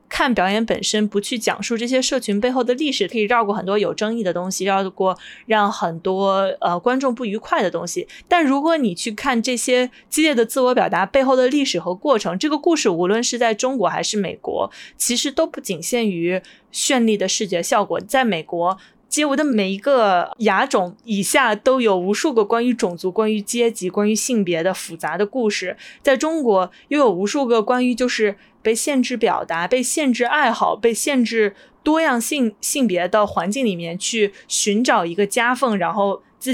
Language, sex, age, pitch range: Chinese, female, 20-39, 200-260 Hz